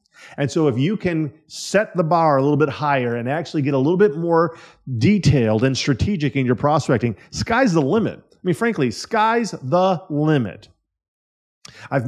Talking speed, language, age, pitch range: 175 wpm, English, 40-59, 125-170 Hz